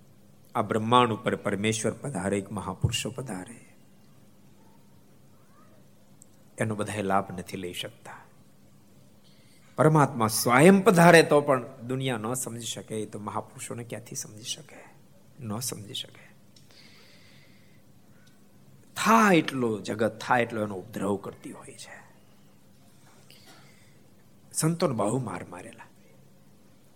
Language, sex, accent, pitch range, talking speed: Gujarati, male, native, 105-130 Hz, 75 wpm